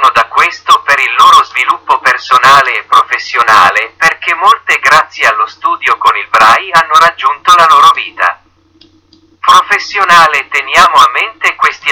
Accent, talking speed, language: Italian, 135 wpm, Spanish